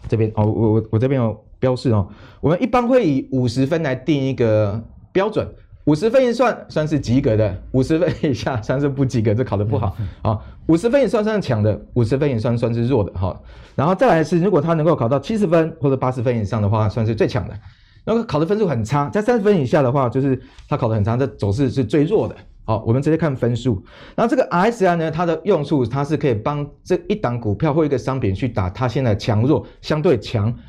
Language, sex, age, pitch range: Chinese, male, 30-49, 110-160 Hz